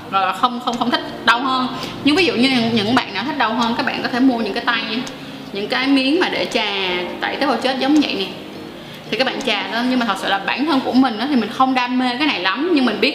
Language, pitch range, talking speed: Vietnamese, 210-265 Hz, 300 wpm